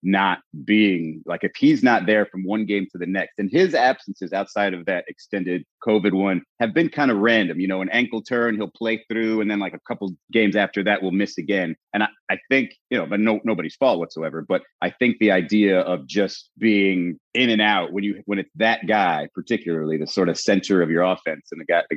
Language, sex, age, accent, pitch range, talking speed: English, male, 30-49, American, 95-115 Hz, 230 wpm